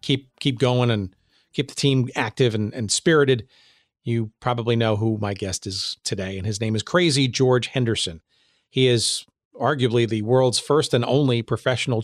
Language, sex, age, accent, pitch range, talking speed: English, male, 40-59, American, 110-130 Hz, 175 wpm